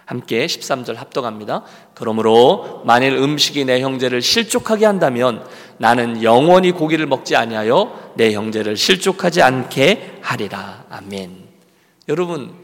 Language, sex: Korean, male